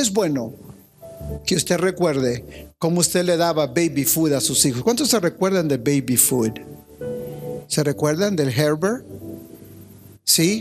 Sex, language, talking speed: male, Spanish, 140 wpm